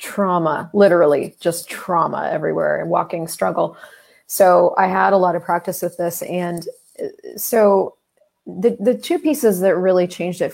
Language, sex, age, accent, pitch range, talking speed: English, female, 30-49, American, 175-225 Hz, 155 wpm